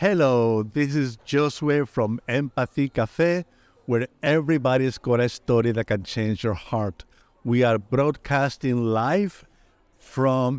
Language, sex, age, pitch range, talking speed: English, male, 50-69, 115-145 Hz, 125 wpm